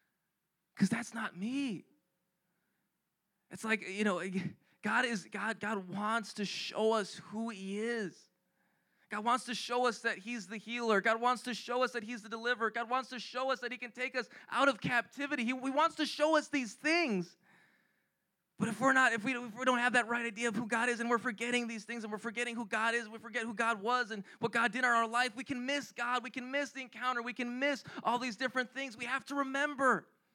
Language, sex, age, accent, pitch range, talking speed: English, male, 20-39, American, 200-245 Hz, 235 wpm